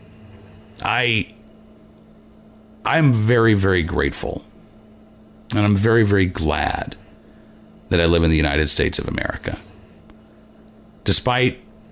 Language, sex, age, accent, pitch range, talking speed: English, male, 50-69, American, 85-105 Hz, 95 wpm